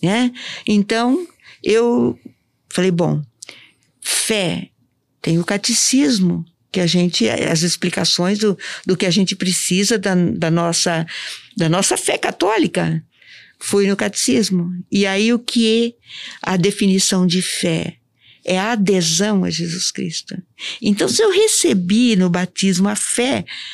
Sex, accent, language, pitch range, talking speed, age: female, Brazilian, Portuguese, 180-230 Hz, 135 wpm, 50-69